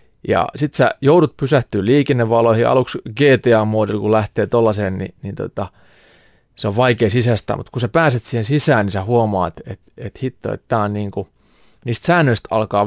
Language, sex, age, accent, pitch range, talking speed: Finnish, male, 30-49, native, 100-125 Hz, 165 wpm